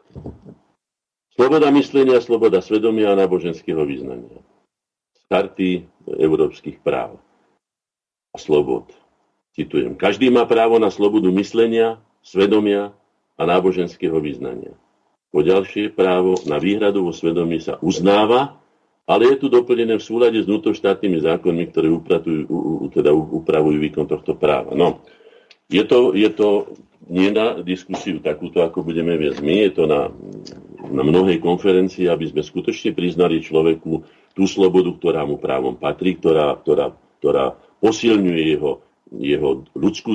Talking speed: 130 wpm